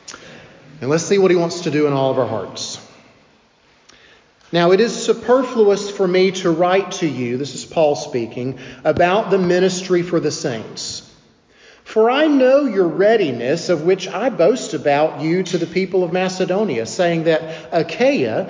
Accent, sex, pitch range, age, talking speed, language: American, male, 150-200 Hz, 40-59, 170 wpm, English